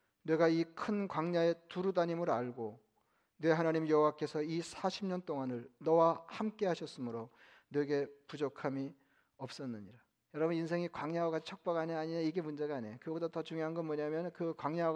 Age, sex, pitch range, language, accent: 40-59, male, 145-170 Hz, Korean, native